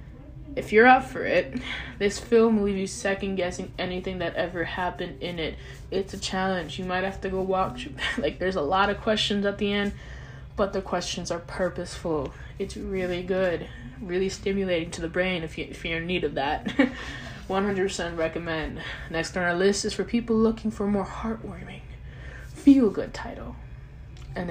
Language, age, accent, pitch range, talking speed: English, 20-39, American, 170-200 Hz, 185 wpm